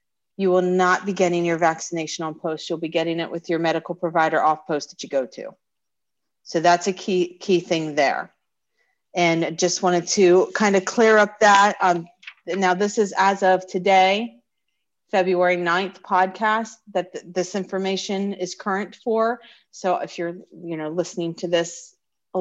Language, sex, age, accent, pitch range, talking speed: English, female, 40-59, American, 170-200 Hz, 175 wpm